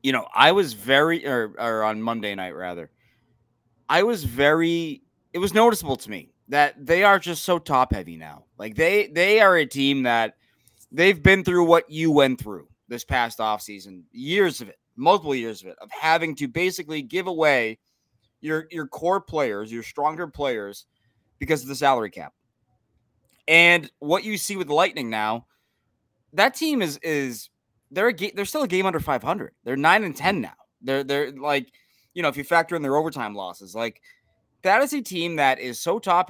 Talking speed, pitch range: 190 wpm, 120-195 Hz